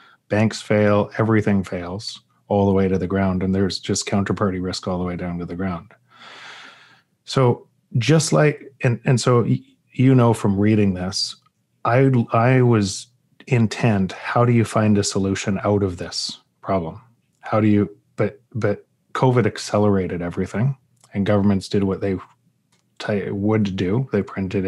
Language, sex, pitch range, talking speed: English, male, 100-120 Hz, 155 wpm